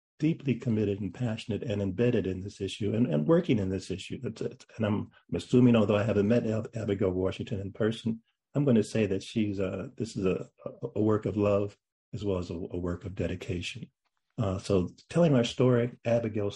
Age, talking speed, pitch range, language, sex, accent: 50-69, 205 wpm, 95-115 Hz, English, male, American